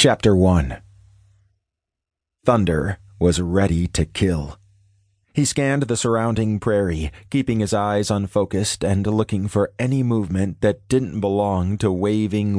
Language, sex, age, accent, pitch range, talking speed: English, male, 30-49, American, 95-105 Hz, 125 wpm